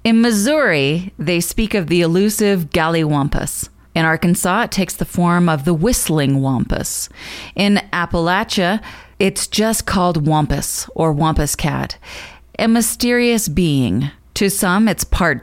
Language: English